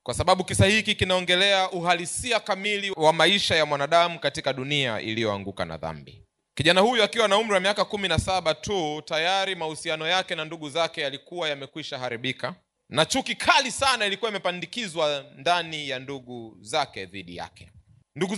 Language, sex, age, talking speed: Swahili, male, 30-49, 155 wpm